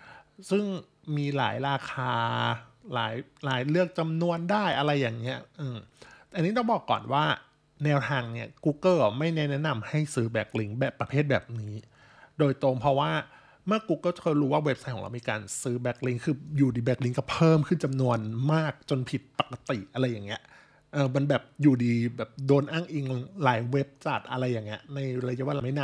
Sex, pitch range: male, 120-155 Hz